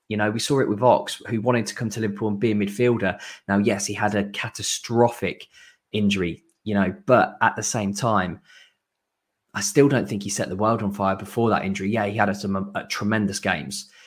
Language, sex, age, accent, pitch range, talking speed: English, male, 20-39, British, 100-115 Hz, 220 wpm